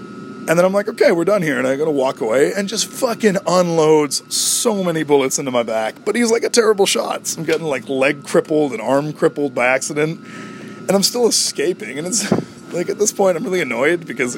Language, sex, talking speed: English, male, 220 wpm